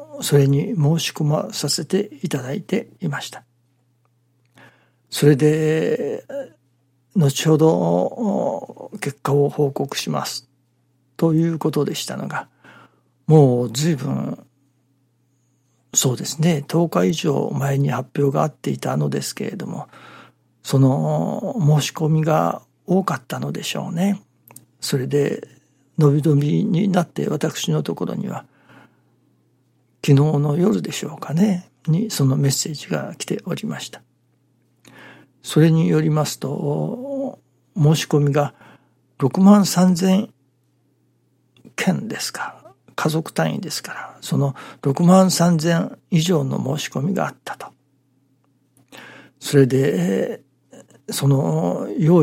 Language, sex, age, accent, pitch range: Japanese, male, 60-79, native, 135-175 Hz